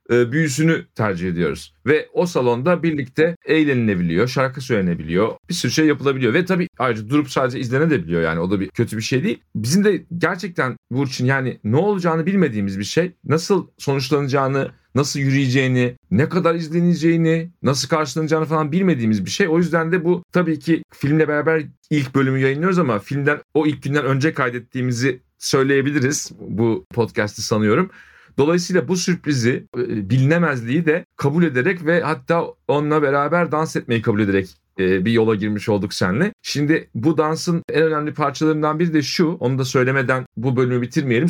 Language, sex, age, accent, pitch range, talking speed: Turkish, male, 40-59, native, 125-165 Hz, 160 wpm